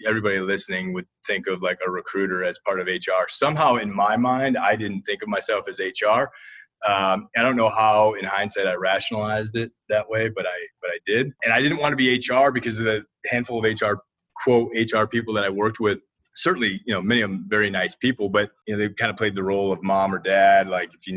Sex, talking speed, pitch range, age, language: male, 240 wpm, 95-115 Hz, 30-49, English